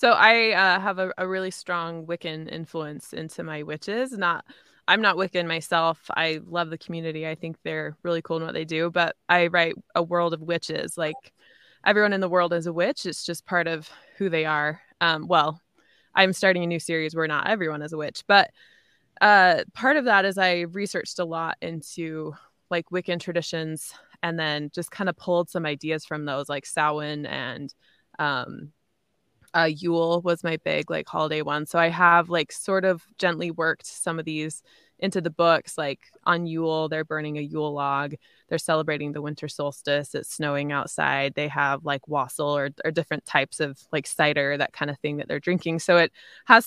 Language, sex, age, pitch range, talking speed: English, female, 20-39, 155-180 Hz, 195 wpm